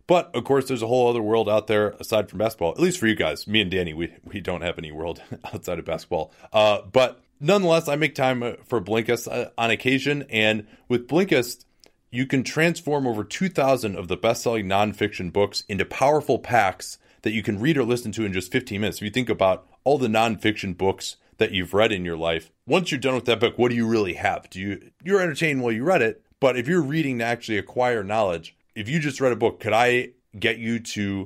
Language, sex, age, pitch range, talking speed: English, male, 30-49, 95-125 Hz, 230 wpm